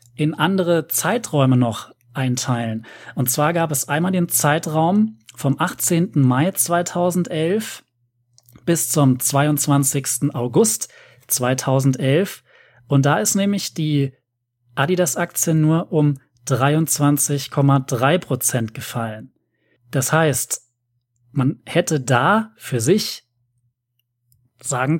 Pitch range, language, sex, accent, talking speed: 125-160 Hz, German, male, German, 95 wpm